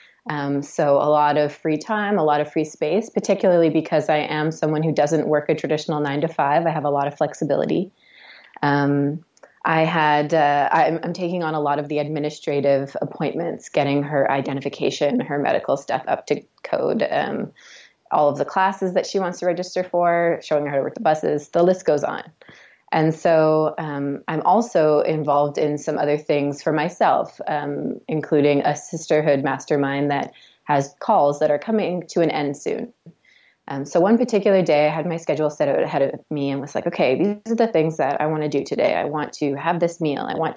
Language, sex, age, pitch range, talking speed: English, female, 20-39, 145-170 Hz, 205 wpm